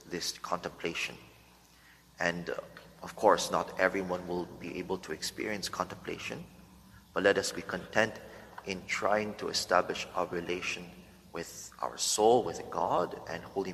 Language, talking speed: English, 140 wpm